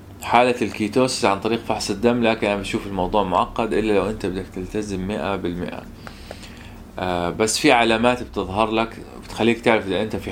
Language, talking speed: Arabic, 165 wpm